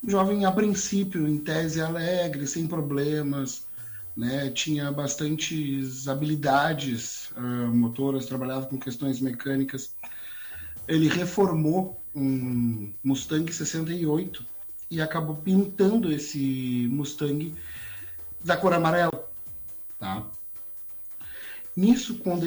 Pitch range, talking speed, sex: 135-175 Hz, 90 wpm, male